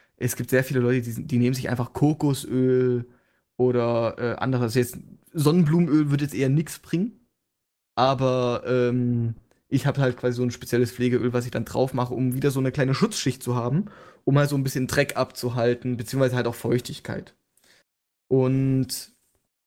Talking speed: 175 wpm